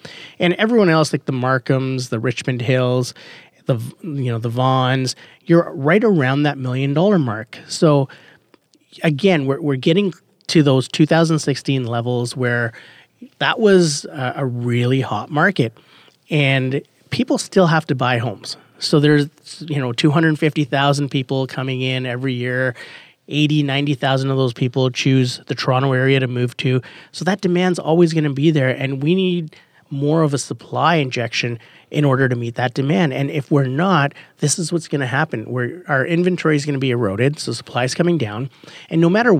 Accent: American